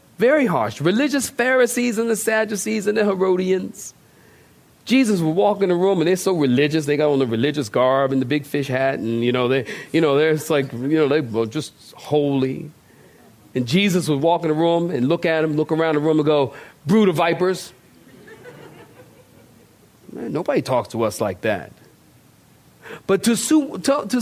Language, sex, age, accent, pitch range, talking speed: English, male, 40-59, American, 125-170 Hz, 190 wpm